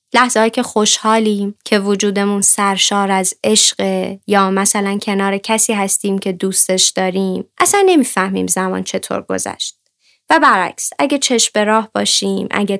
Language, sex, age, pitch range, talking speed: Persian, female, 20-39, 200-255 Hz, 130 wpm